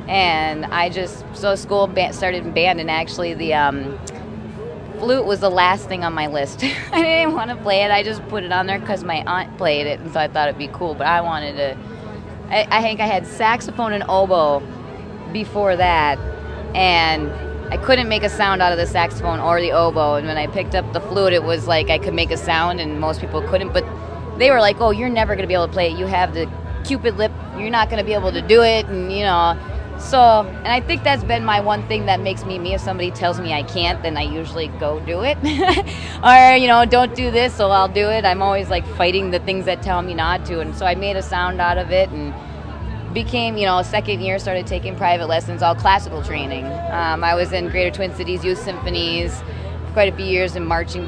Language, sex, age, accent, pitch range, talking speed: English, female, 20-39, American, 140-205 Hz, 240 wpm